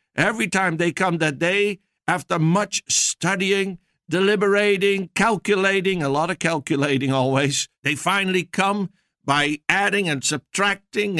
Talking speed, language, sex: 125 wpm, English, male